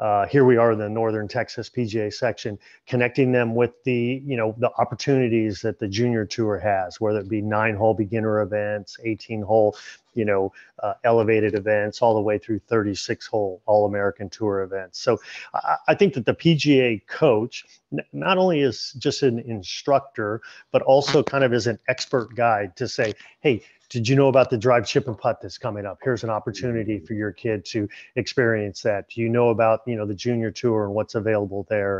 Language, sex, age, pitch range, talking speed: English, male, 30-49, 105-120 Hz, 195 wpm